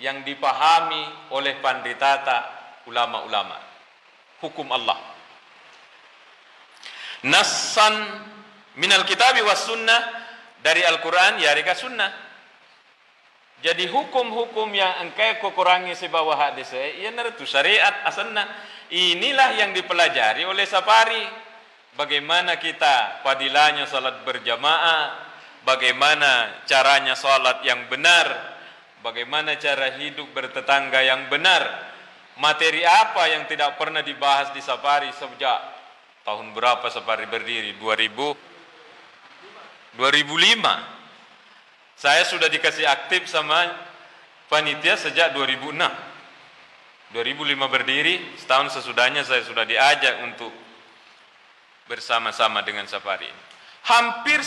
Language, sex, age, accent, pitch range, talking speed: Indonesian, male, 50-69, native, 140-215 Hz, 95 wpm